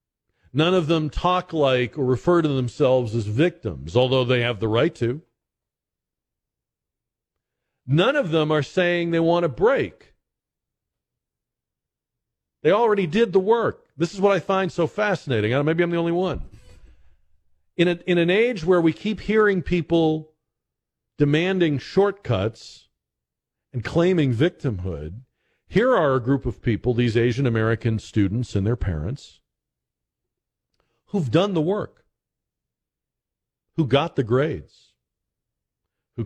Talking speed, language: 130 wpm, English